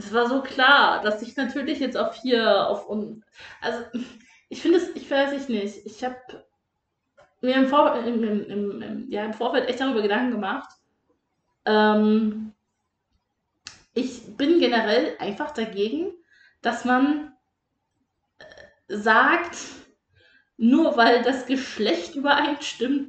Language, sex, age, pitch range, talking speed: German, female, 20-39, 220-265 Hz, 130 wpm